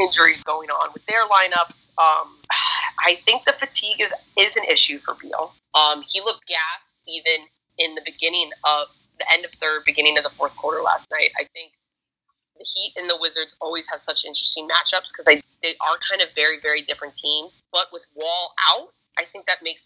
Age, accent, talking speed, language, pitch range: 20-39, American, 200 wpm, English, 155-180 Hz